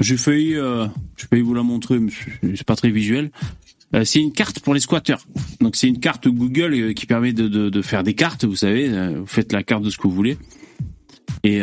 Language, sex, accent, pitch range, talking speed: French, male, French, 110-145 Hz, 245 wpm